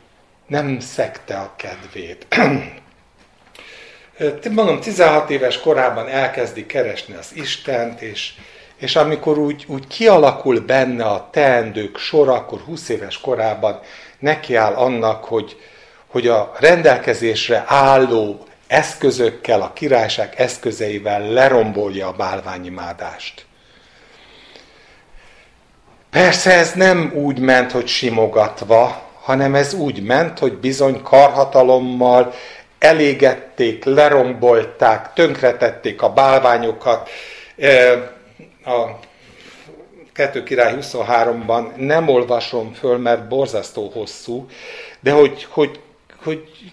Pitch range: 120-150 Hz